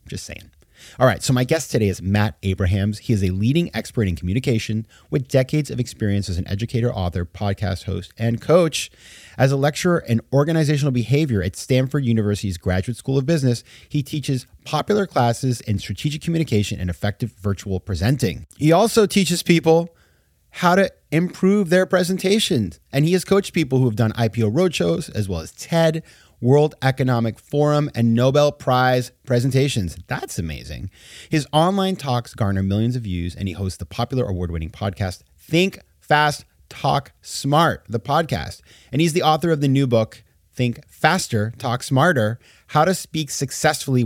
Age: 30-49